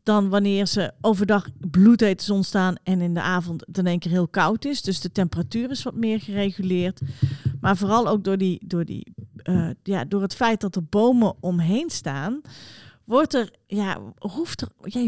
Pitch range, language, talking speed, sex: 170-210 Hz, Dutch, 190 wpm, female